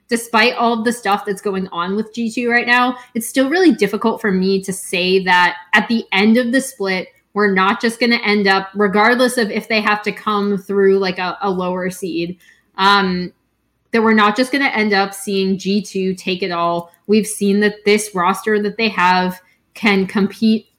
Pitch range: 185-215 Hz